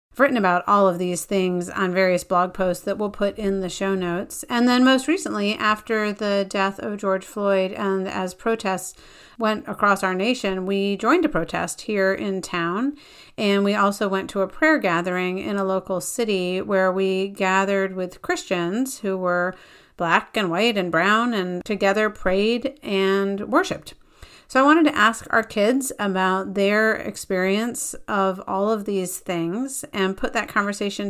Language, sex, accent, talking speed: English, female, American, 175 wpm